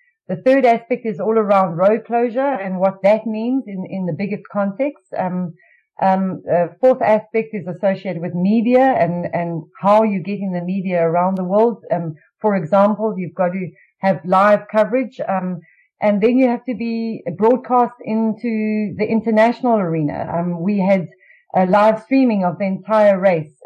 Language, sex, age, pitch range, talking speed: English, female, 40-59, 180-220 Hz, 170 wpm